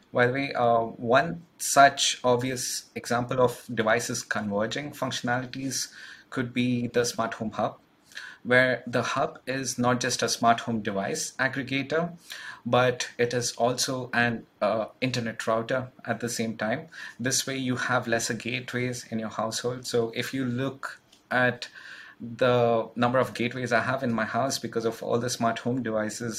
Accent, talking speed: Indian, 160 wpm